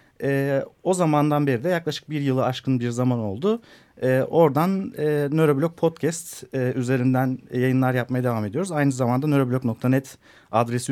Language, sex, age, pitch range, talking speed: Turkish, male, 40-59, 120-155 Hz, 150 wpm